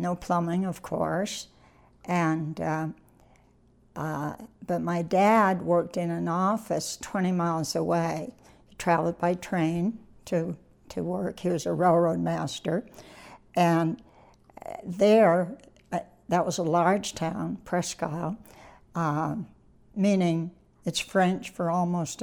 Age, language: 60-79, English